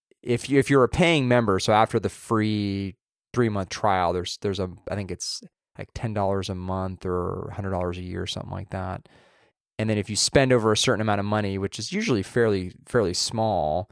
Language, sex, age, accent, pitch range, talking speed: English, male, 20-39, American, 95-125 Hz, 220 wpm